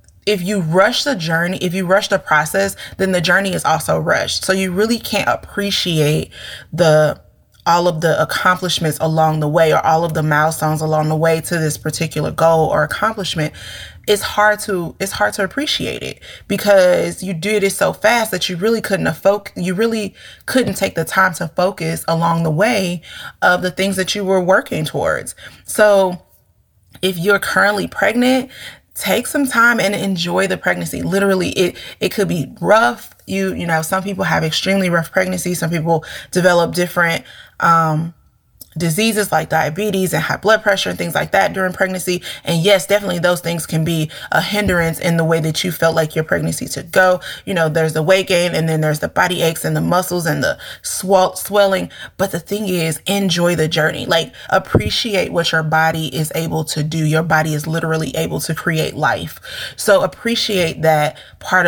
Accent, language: American, English